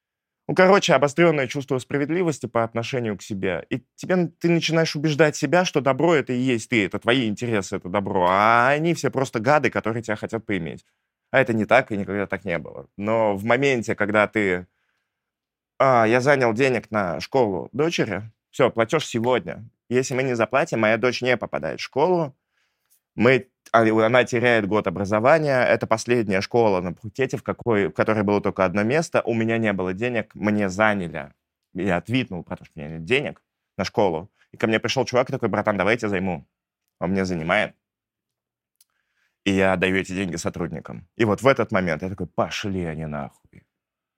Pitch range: 100-130 Hz